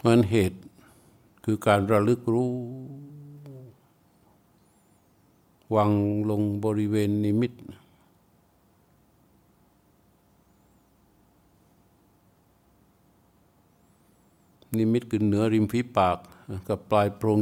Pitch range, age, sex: 105-120 Hz, 60-79, male